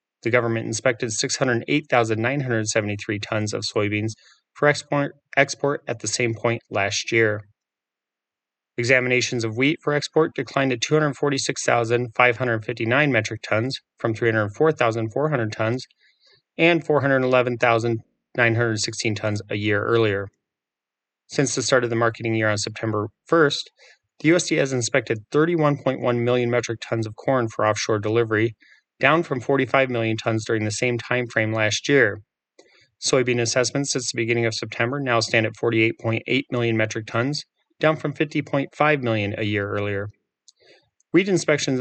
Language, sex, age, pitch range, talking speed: English, male, 30-49, 110-135 Hz, 130 wpm